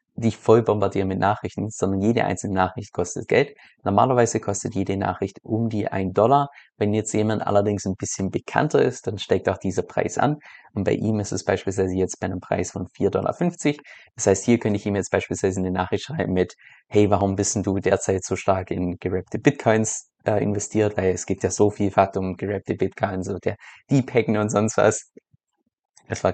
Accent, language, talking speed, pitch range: German, German, 205 wpm, 95-110 Hz